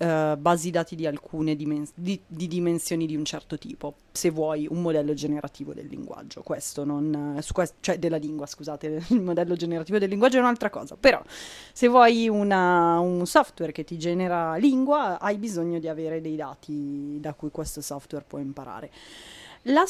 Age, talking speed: 30-49, 180 wpm